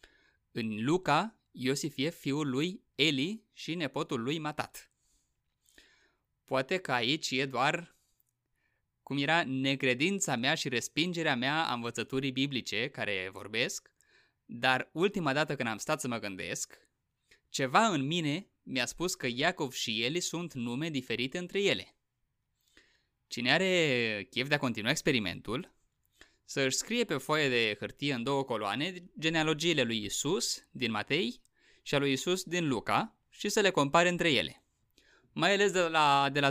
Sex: male